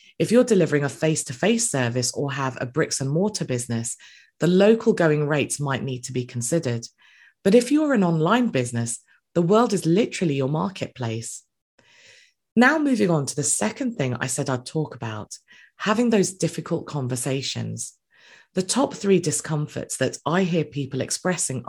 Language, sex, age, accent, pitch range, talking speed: English, female, 20-39, British, 130-195 Hz, 160 wpm